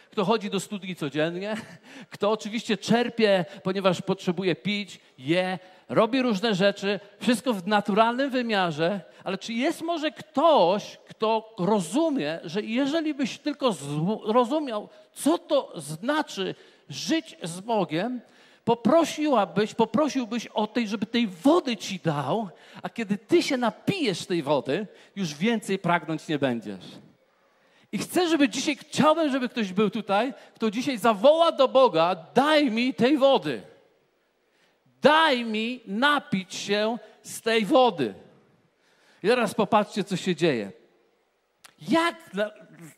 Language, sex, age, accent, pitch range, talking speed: Polish, male, 50-69, native, 195-260 Hz, 125 wpm